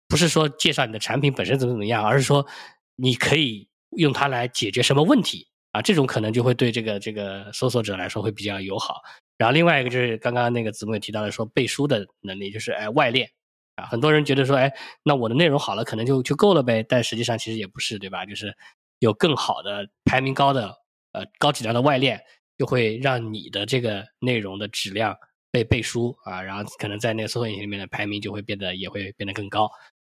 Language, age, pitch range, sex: English, 20-39, 110-140 Hz, male